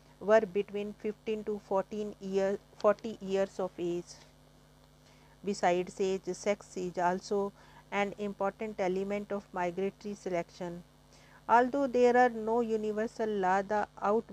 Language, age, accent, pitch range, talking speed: English, 50-69, Indian, 185-215 Hz, 115 wpm